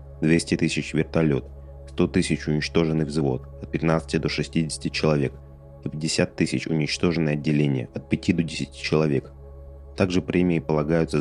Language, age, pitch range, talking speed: Russian, 30-49, 70-85 Hz, 135 wpm